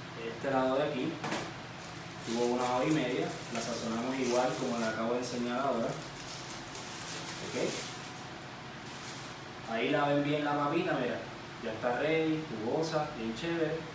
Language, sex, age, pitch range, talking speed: Spanish, male, 20-39, 125-155 Hz, 140 wpm